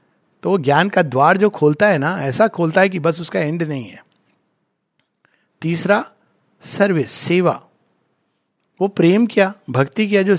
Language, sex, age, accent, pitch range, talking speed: Hindi, male, 60-79, native, 170-225 Hz, 150 wpm